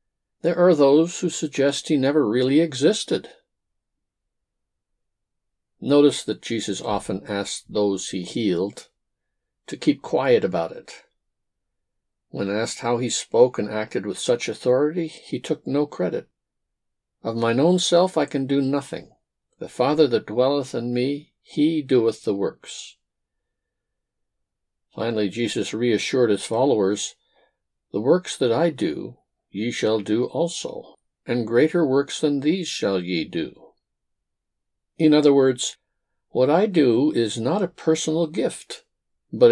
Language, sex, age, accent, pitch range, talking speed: English, male, 60-79, American, 115-165 Hz, 135 wpm